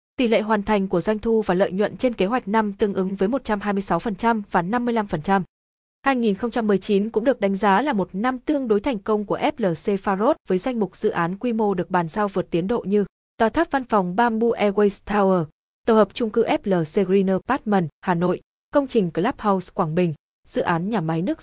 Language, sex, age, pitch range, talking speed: Vietnamese, female, 20-39, 185-230 Hz, 210 wpm